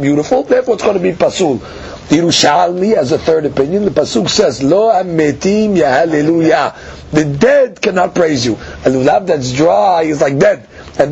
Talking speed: 175 wpm